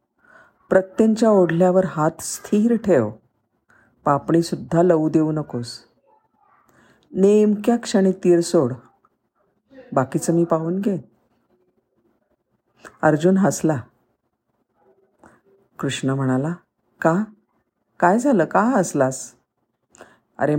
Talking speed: 80 wpm